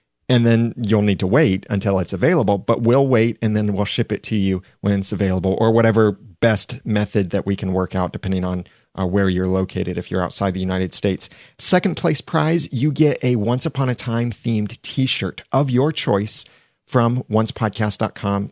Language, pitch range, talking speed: English, 100-125 Hz, 195 wpm